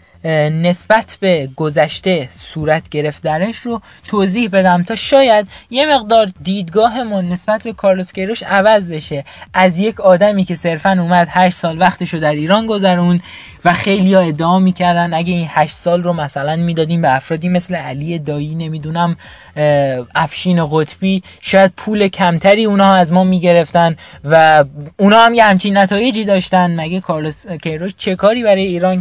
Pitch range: 160-205 Hz